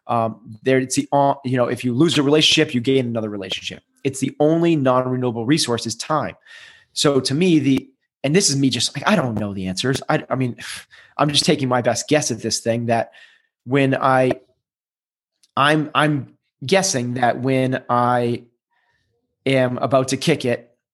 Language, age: English, 30-49